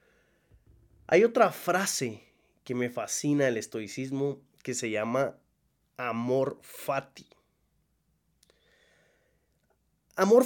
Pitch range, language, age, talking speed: 130-185 Hz, English, 30-49, 80 wpm